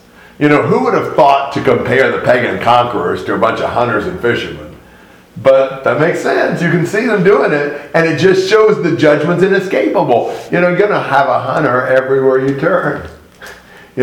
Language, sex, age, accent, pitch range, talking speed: English, male, 50-69, American, 125-165 Hz, 200 wpm